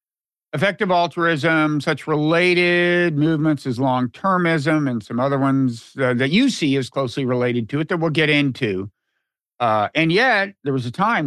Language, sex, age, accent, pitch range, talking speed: English, male, 50-69, American, 135-175 Hz, 165 wpm